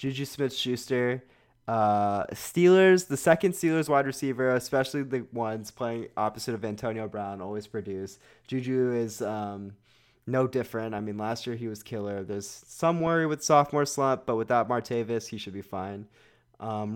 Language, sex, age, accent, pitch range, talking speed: English, male, 20-39, American, 105-130 Hz, 155 wpm